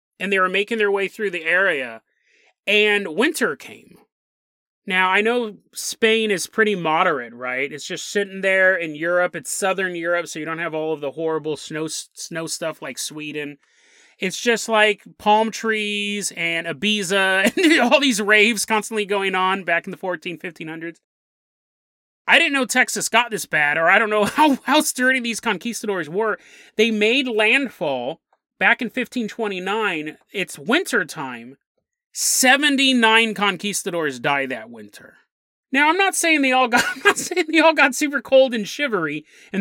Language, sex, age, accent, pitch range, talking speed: English, male, 30-49, American, 175-230 Hz, 165 wpm